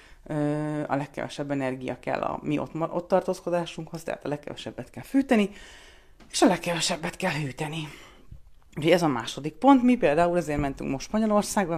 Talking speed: 155 wpm